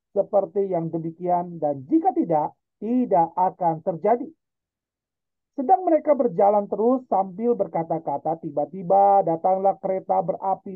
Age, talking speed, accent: 40-59, 105 wpm, native